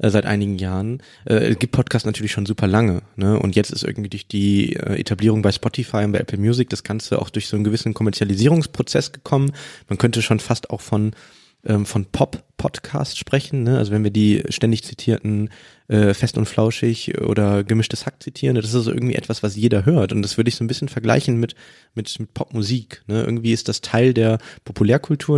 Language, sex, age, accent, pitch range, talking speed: German, male, 20-39, German, 105-125 Hz, 205 wpm